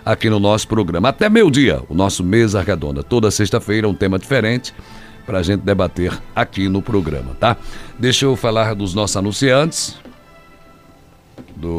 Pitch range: 95-125 Hz